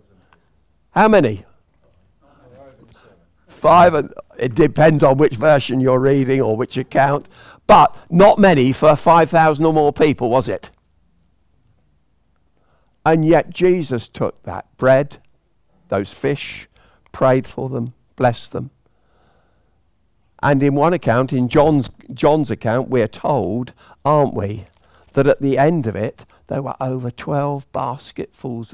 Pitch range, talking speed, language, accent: 90-140 Hz, 125 wpm, English, British